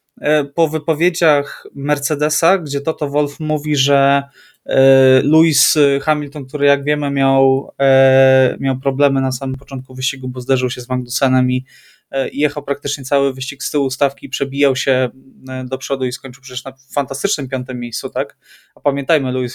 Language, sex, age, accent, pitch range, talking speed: Polish, male, 20-39, native, 130-145 Hz, 145 wpm